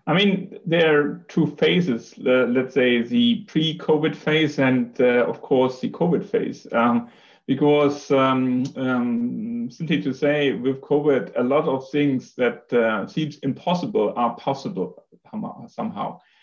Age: 30-49